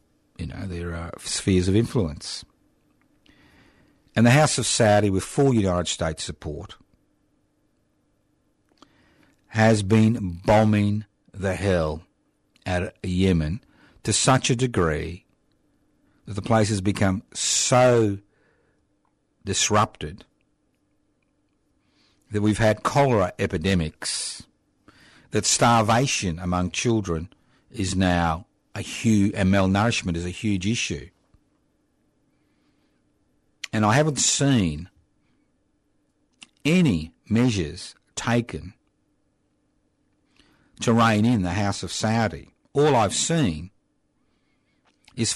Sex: male